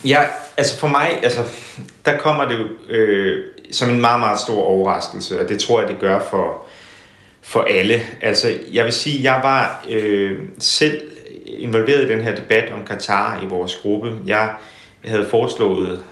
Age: 30-49